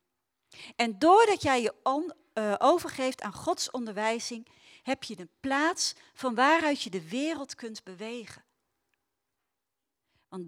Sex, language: female, Dutch